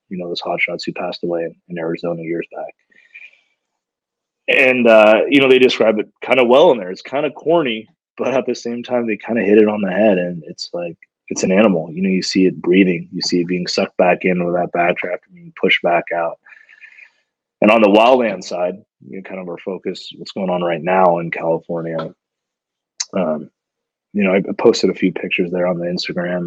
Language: English